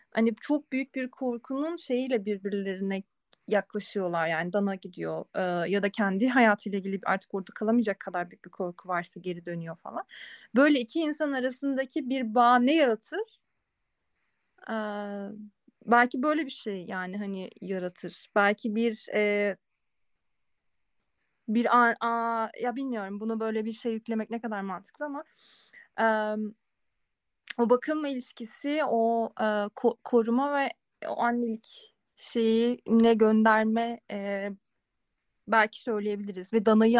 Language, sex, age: Turkish, female, 30-49